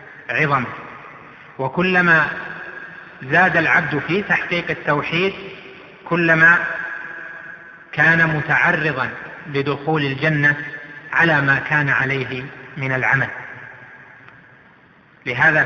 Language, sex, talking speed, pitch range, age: Arabic, male, 75 wpm, 135-160 Hz, 30-49